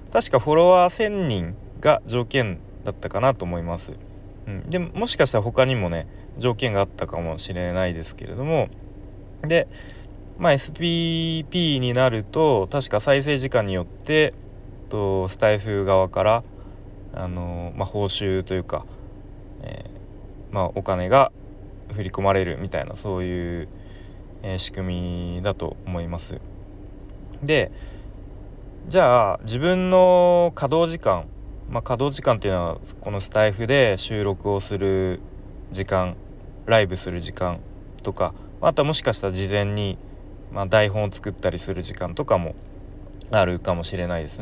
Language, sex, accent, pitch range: Japanese, male, native, 95-130 Hz